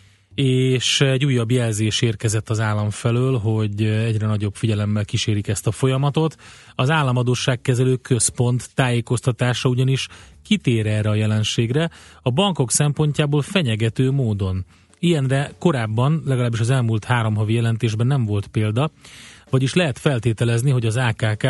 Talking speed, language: 130 wpm, Hungarian